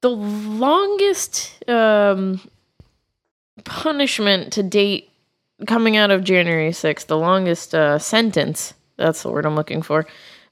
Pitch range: 160-215 Hz